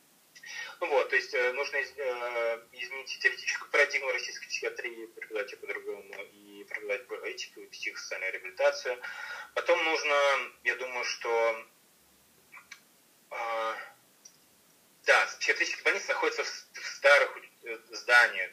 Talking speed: 110 wpm